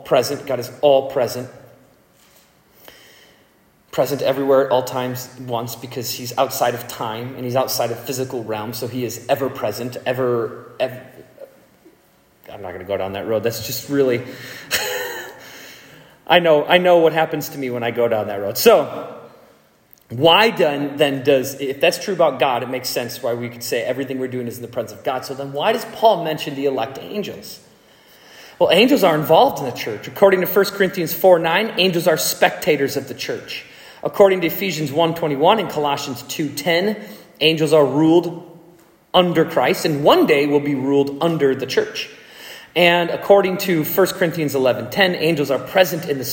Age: 30-49